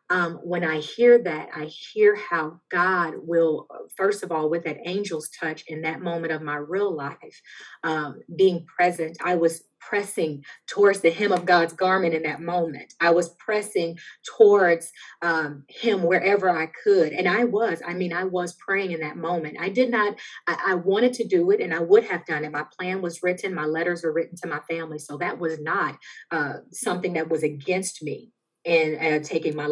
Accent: American